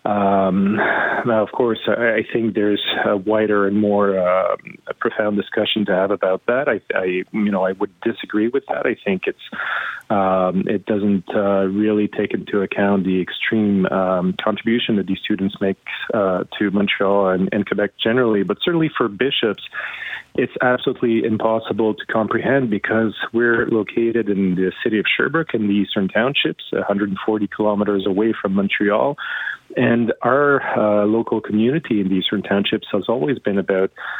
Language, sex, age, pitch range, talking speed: English, male, 30-49, 100-115 Hz, 165 wpm